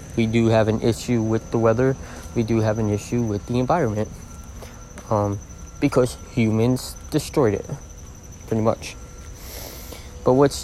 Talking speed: 140 wpm